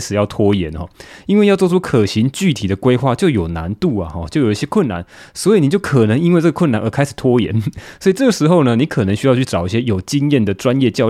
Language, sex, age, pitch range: Chinese, male, 20-39, 105-150 Hz